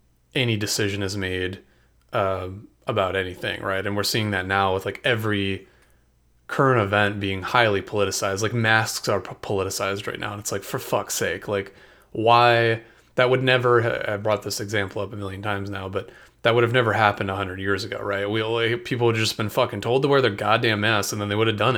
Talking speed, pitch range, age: 210 wpm, 100-120 Hz, 30-49